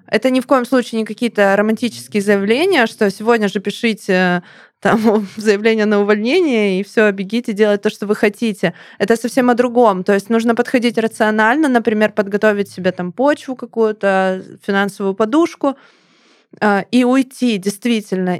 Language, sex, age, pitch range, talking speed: Russian, female, 20-39, 190-230 Hz, 145 wpm